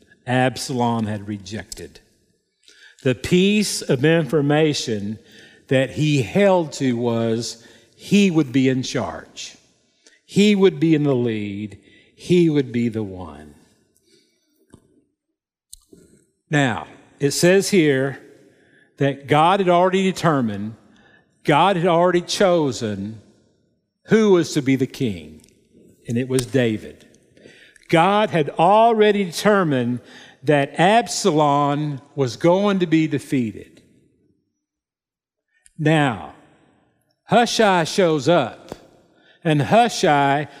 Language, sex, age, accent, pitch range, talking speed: English, male, 50-69, American, 125-180 Hz, 100 wpm